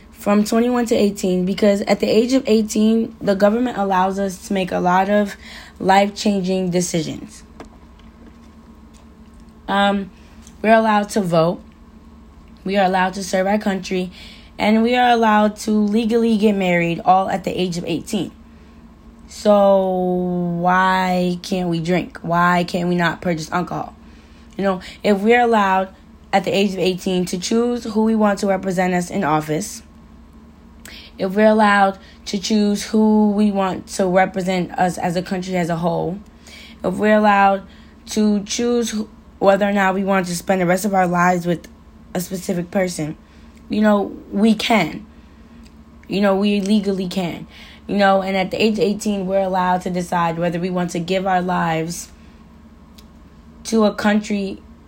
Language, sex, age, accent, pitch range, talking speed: English, female, 10-29, American, 175-210 Hz, 160 wpm